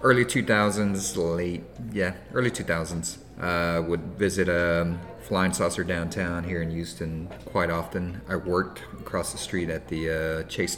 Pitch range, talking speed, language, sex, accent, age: 85-105 Hz, 165 wpm, English, male, American, 30-49